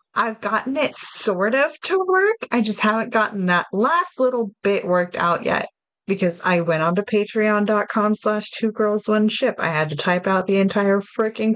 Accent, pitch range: American, 190-235 Hz